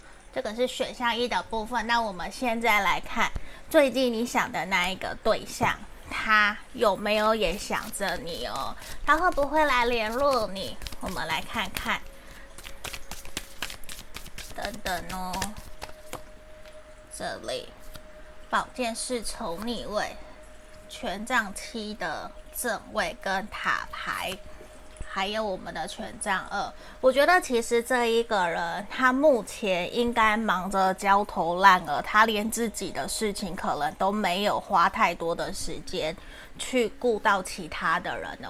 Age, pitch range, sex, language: 20-39, 195-240 Hz, female, Chinese